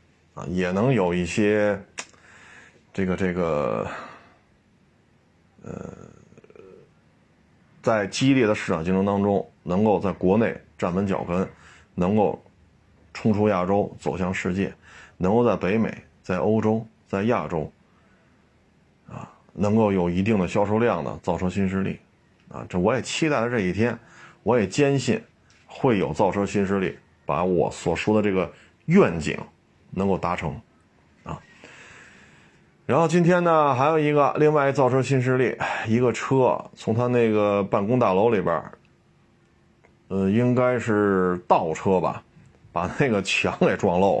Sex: male